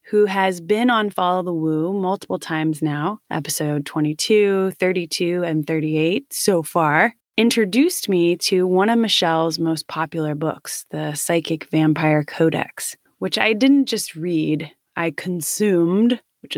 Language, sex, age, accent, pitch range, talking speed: English, female, 20-39, American, 160-195 Hz, 140 wpm